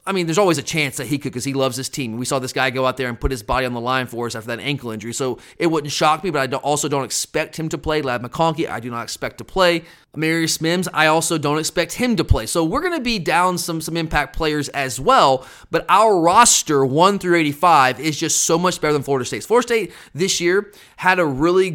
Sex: male